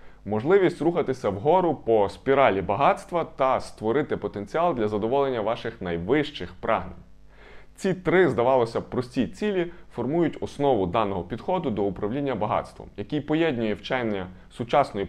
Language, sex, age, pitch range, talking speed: Ukrainian, male, 20-39, 100-150 Hz, 125 wpm